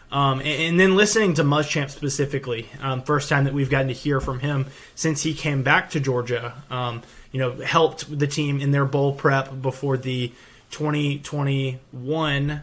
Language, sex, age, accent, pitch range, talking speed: English, male, 20-39, American, 130-150 Hz, 170 wpm